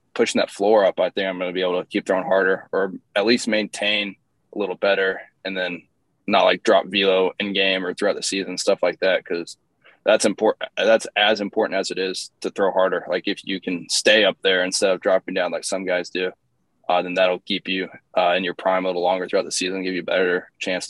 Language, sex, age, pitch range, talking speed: English, male, 20-39, 90-100 Hz, 240 wpm